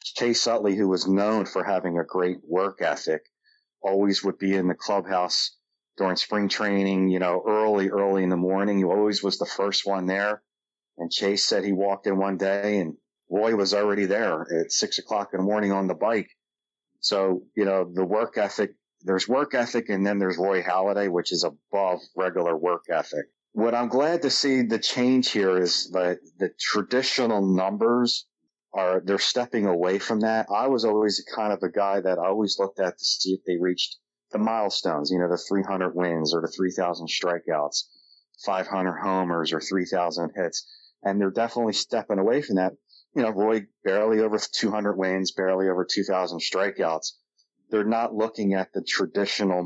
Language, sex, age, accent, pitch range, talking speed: English, male, 40-59, American, 90-105 Hz, 185 wpm